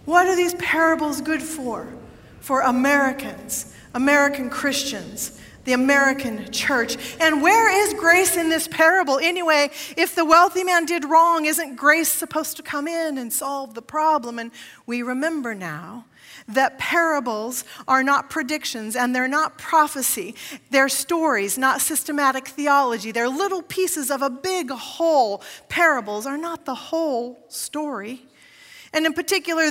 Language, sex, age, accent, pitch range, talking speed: English, female, 40-59, American, 265-320 Hz, 145 wpm